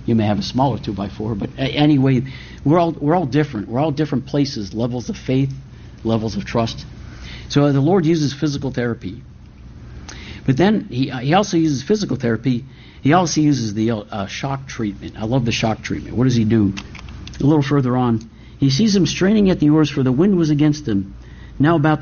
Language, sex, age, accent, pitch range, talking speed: English, male, 50-69, American, 110-145 Hz, 200 wpm